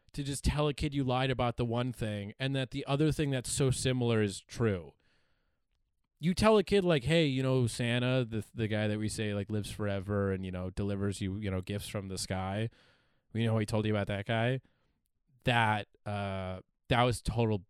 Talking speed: 220 wpm